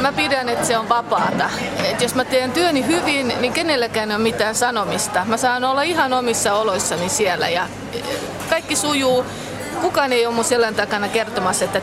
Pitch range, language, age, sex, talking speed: 215-270 Hz, Finnish, 30-49, female, 185 wpm